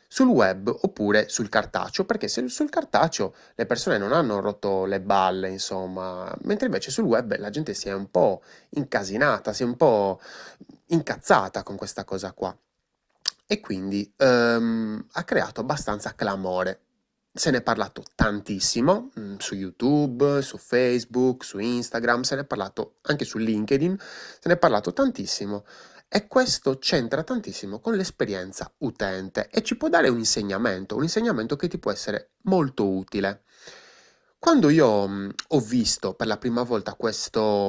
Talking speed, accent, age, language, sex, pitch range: 155 wpm, native, 20-39, Italian, male, 100-135 Hz